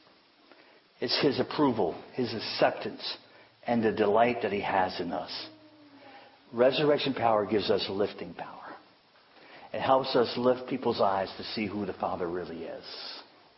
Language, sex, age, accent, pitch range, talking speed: English, male, 50-69, American, 110-140 Hz, 140 wpm